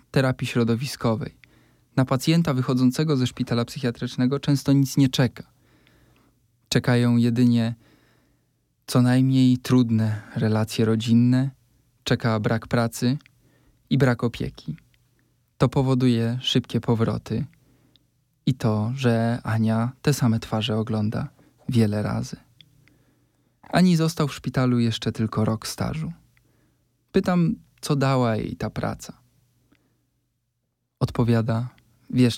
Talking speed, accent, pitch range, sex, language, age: 100 wpm, native, 120-135 Hz, male, Polish, 20-39